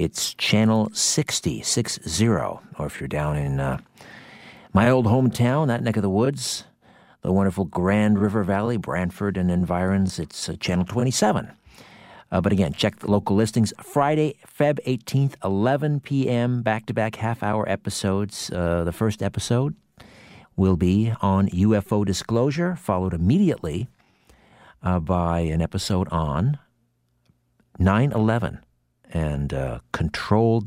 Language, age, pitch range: English, 50-69, 85-110 Hz